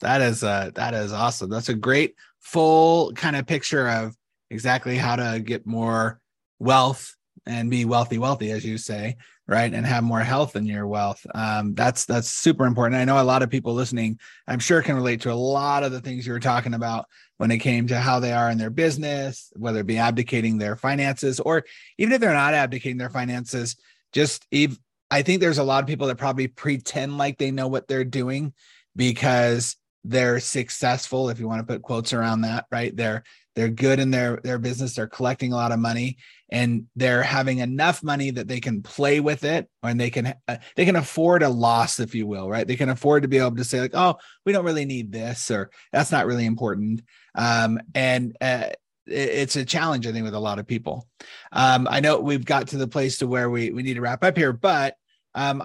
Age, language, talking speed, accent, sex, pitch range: 30-49, English, 220 wpm, American, male, 115-140 Hz